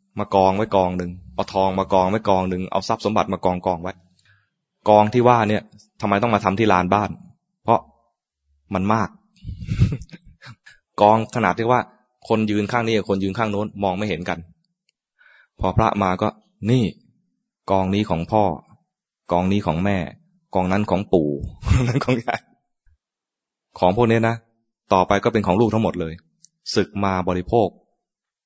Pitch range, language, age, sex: 95-115 Hz, English, 20-39, male